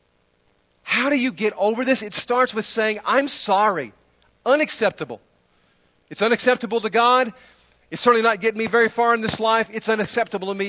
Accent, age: American, 40-59